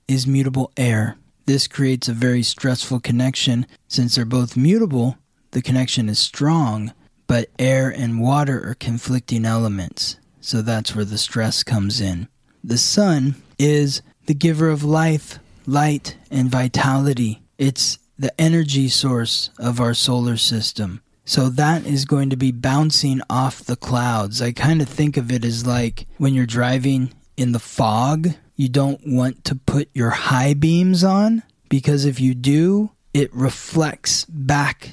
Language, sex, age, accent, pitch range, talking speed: English, male, 20-39, American, 125-150 Hz, 155 wpm